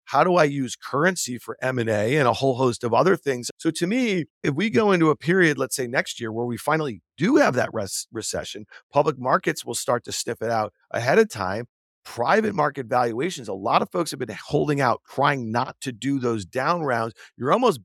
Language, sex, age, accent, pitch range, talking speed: English, male, 40-59, American, 125-165 Hz, 220 wpm